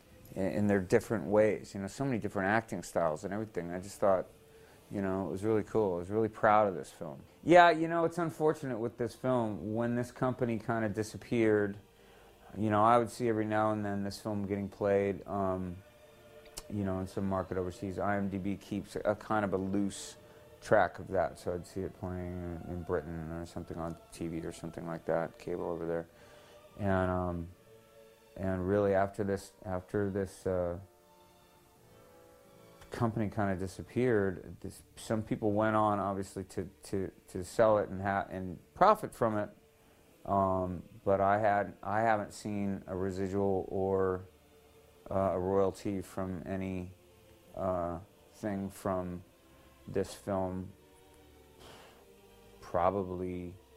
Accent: American